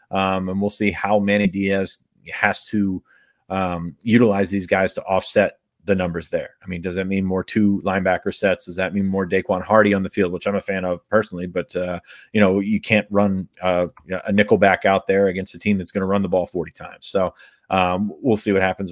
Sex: male